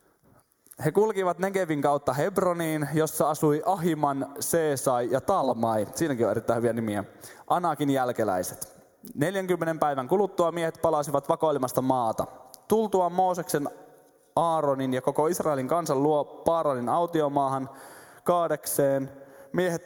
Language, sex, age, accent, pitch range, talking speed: Finnish, male, 20-39, native, 115-160 Hz, 110 wpm